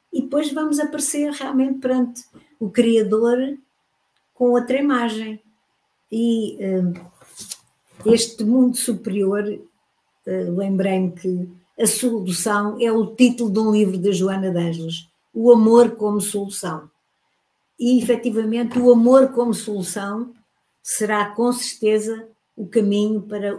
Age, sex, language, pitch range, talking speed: 50-69, female, Portuguese, 180-225 Hz, 115 wpm